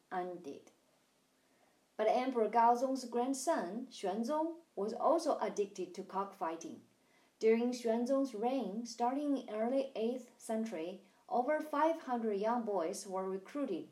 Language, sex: English, female